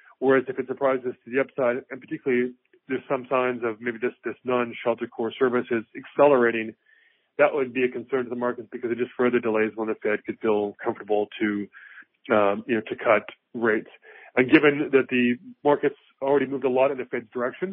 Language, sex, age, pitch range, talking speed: English, male, 40-59, 115-135 Hz, 205 wpm